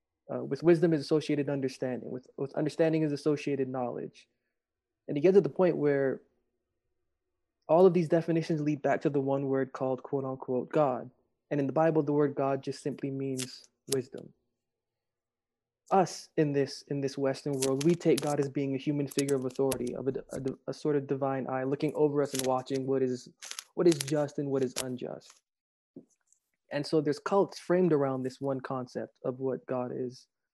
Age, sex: 20-39, male